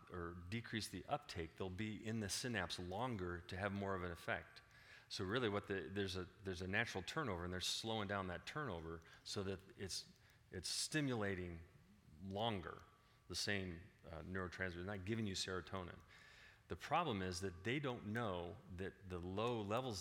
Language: English